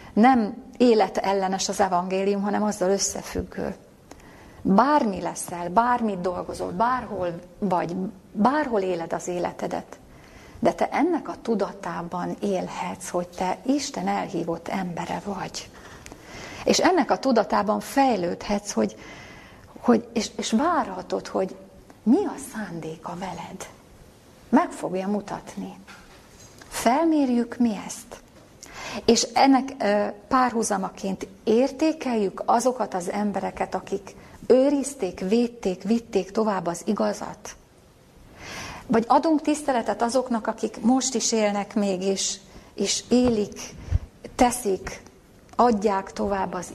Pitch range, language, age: 195-240 Hz, Hungarian, 30-49